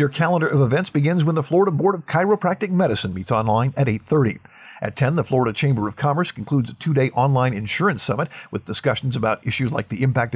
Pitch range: 115-155 Hz